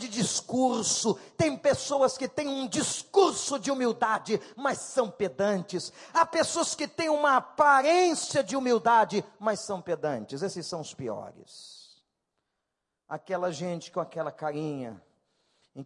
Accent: Brazilian